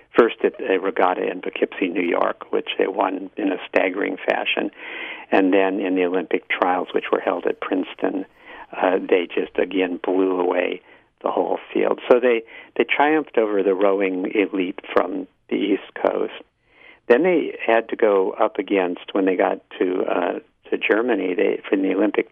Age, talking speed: 50-69, 175 wpm